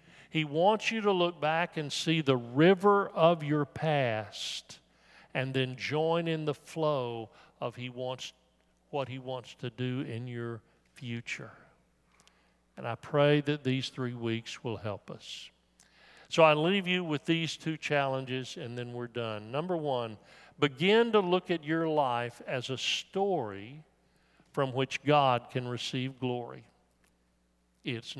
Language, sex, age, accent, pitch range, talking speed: English, male, 50-69, American, 115-150 Hz, 150 wpm